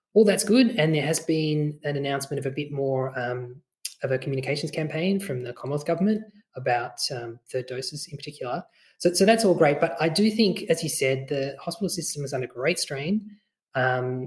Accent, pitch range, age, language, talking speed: Australian, 125-160 Hz, 20-39, English, 205 wpm